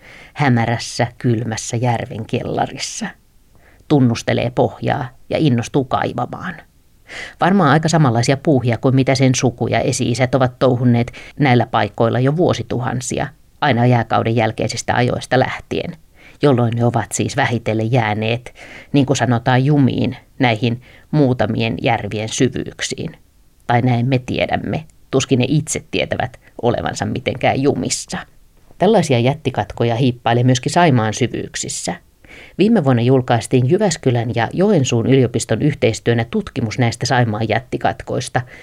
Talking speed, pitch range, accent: 110 wpm, 115-135 Hz, native